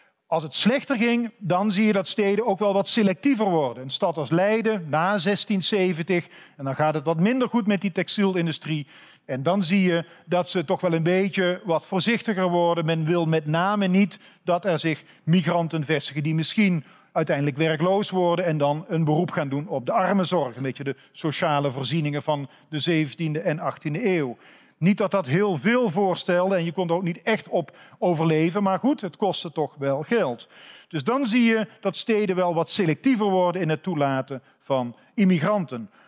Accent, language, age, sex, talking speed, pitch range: Dutch, Dutch, 50-69, male, 195 wpm, 160-210 Hz